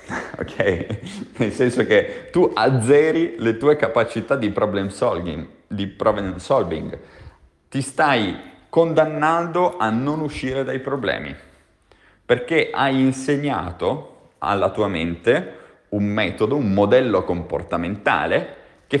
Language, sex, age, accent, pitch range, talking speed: Italian, male, 30-49, native, 95-145 Hz, 110 wpm